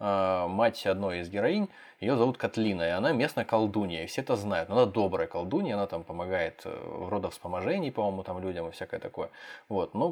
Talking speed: 185 wpm